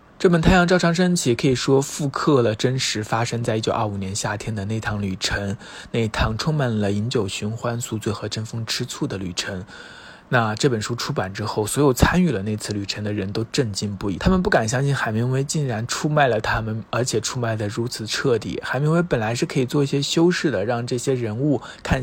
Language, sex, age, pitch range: Chinese, male, 20-39, 110-140 Hz